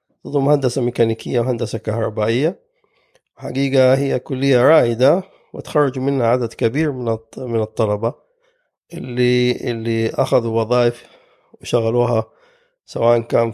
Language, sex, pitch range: Arabic, male, 115-140 Hz